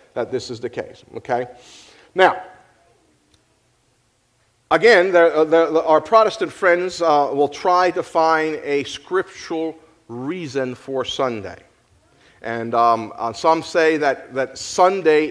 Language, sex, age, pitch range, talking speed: English, male, 50-69, 125-160 Hz, 110 wpm